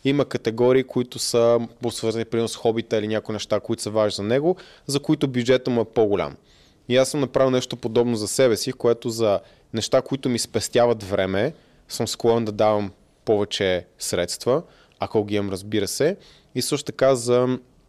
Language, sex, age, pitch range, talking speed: Bulgarian, male, 20-39, 105-125 Hz, 180 wpm